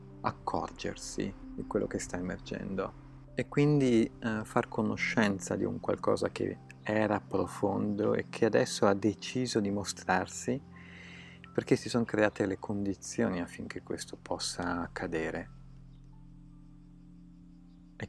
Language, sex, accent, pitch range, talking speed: Italian, male, native, 95-120 Hz, 115 wpm